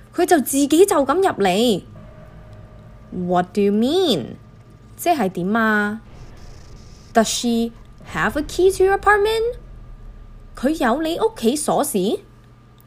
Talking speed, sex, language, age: 65 wpm, female, English, 10-29